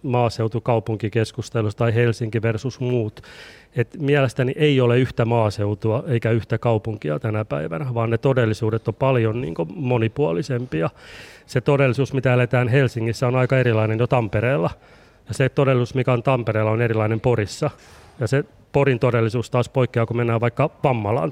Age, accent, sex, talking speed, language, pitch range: 30-49, native, male, 150 wpm, Finnish, 115-135 Hz